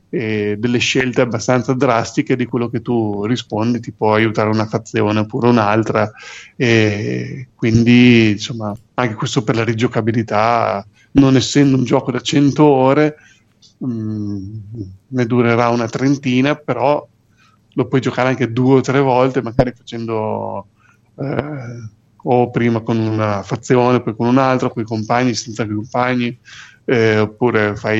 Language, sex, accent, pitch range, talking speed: Italian, male, native, 115-135 Hz, 140 wpm